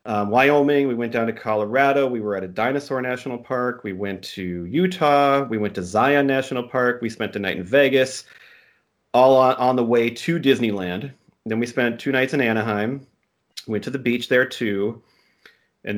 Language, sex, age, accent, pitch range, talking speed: English, male, 40-59, American, 105-135 Hz, 190 wpm